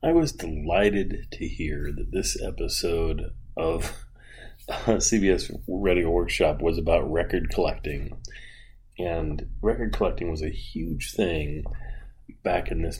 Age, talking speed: 30-49, 125 wpm